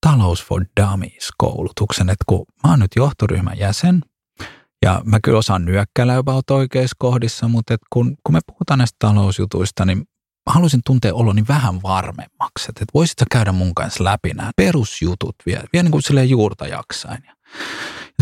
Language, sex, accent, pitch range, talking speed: Finnish, male, native, 95-135 Hz, 165 wpm